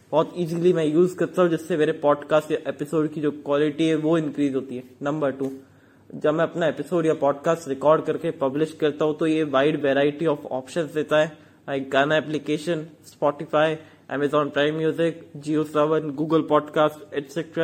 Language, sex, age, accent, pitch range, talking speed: English, male, 20-39, Indian, 140-160 Hz, 145 wpm